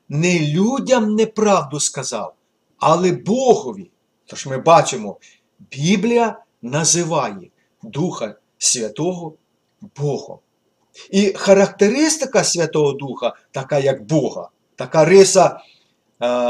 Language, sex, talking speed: Ukrainian, male, 85 wpm